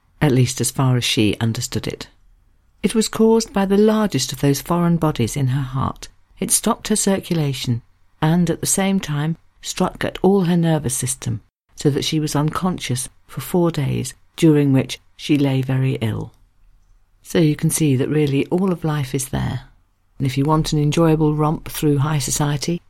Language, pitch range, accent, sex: English, 125-160 Hz, British, female